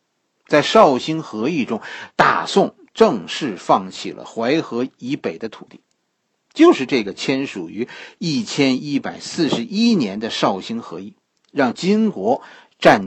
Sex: male